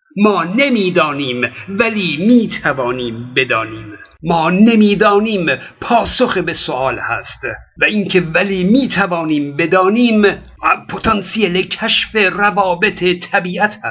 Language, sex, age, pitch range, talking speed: Persian, male, 50-69, 180-235 Hz, 85 wpm